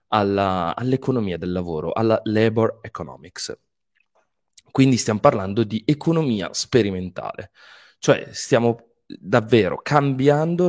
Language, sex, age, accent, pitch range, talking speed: Italian, male, 20-39, native, 90-125 Hz, 90 wpm